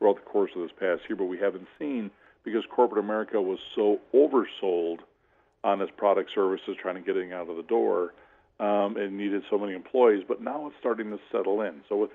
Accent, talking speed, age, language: American, 215 wpm, 50-69, English